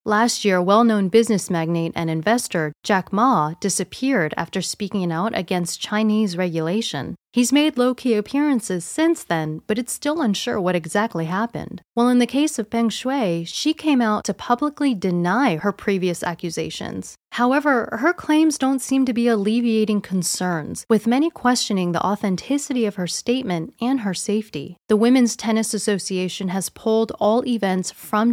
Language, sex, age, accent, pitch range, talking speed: English, female, 30-49, American, 180-235 Hz, 155 wpm